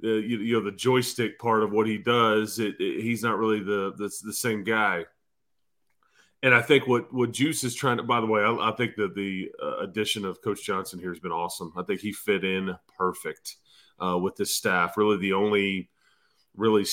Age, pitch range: 30-49, 105-130 Hz